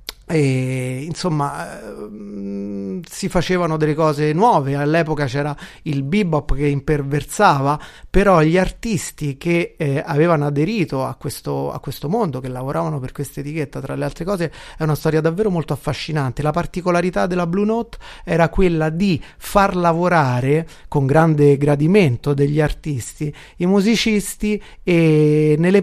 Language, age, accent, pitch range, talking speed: Italian, 30-49, native, 145-190 Hz, 130 wpm